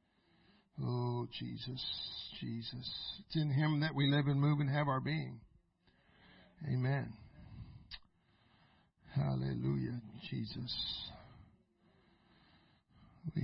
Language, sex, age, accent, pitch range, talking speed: English, male, 60-79, American, 120-145 Hz, 85 wpm